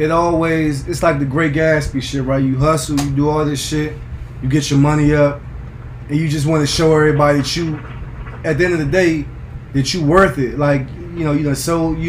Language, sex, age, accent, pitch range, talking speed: English, male, 20-39, American, 135-160 Hz, 230 wpm